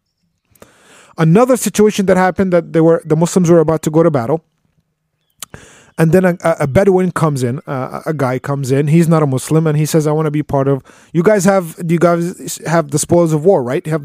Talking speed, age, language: 230 wpm, 20-39, English